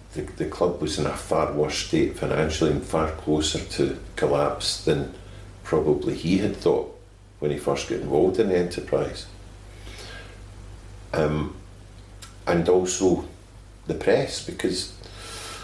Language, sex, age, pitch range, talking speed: English, male, 50-69, 85-100 Hz, 130 wpm